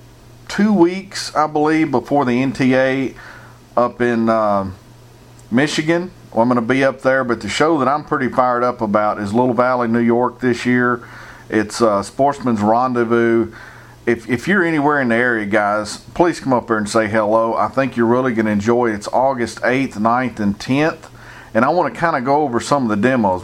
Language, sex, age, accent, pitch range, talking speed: English, male, 50-69, American, 110-125 Hz, 200 wpm